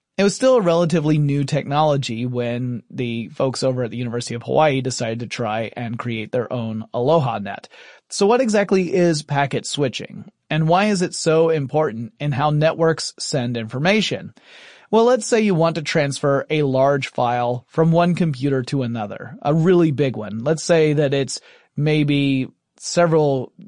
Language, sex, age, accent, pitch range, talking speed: English, male, 30-49, American, 130-175 Hz, 170 wpm